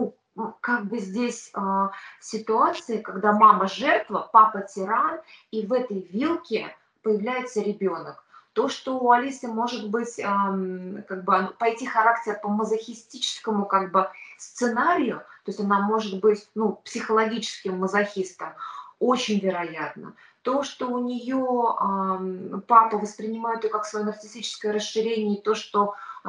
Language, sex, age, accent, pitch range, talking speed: Russian, female, 20-39, native, 195-235 Hz, 130 wpm